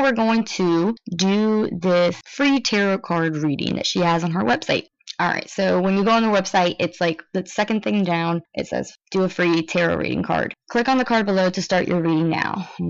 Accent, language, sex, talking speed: American, English, female, 225 wpm